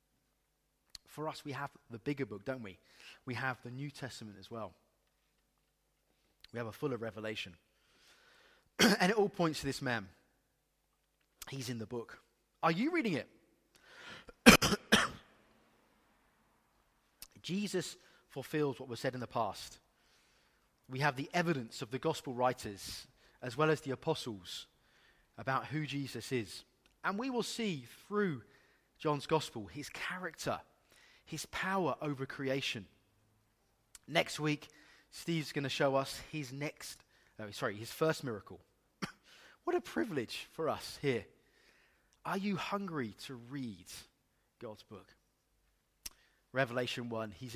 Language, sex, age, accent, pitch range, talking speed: English, male, 30-49, British, 120-190 Hz, 130 wpm